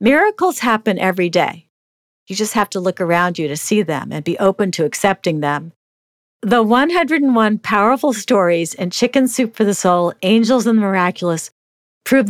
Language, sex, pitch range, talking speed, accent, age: English, female, 165-215 Hz, 170 wpm, American, 50-69